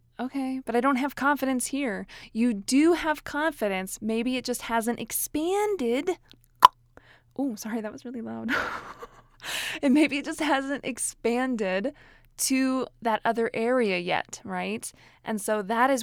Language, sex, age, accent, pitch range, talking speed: English, female, 20-39, American, 210-265 Hz, 140 wpm